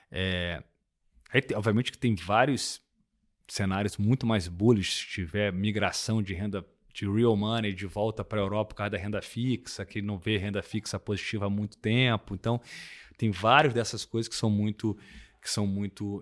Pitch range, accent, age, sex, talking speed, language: 100-120 Hz, Brazilian, 20-39, male, 175 wpm, English